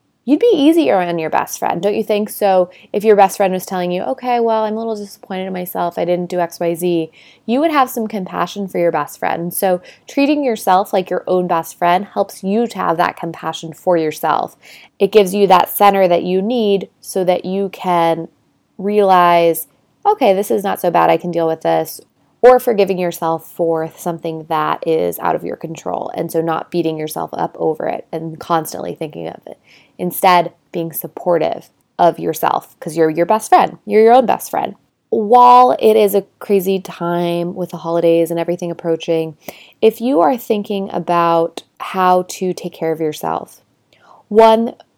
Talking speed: 190 wpm